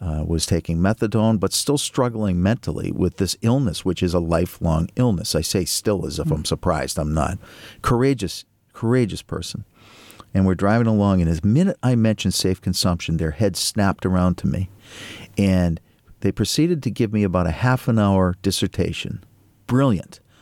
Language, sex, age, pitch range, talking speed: English, male, 50-69, 90-110 Hz, 170 wpm